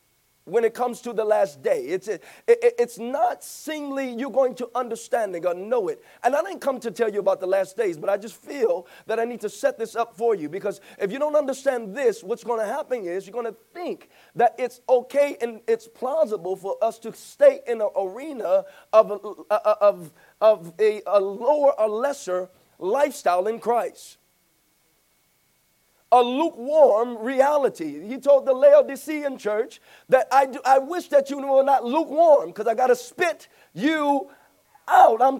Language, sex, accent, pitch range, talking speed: English, male, American, 230-300 Hz, 190 wpm